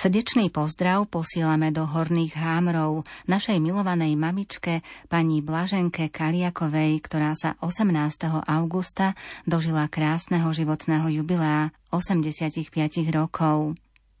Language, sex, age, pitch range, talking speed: Slovak, female, 30-49, 155-170 Hz, 95 wpm